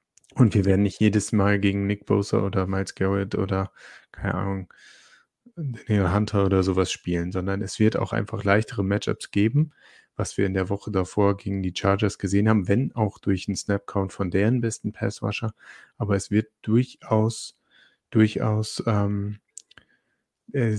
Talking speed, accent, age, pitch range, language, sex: 155 wpm, German, 30-49, 100-110 Hz, German, male